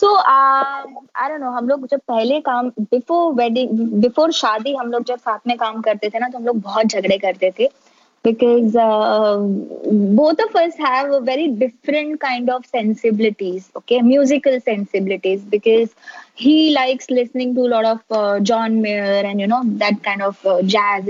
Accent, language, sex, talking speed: native, Hindi, female, 135 wpm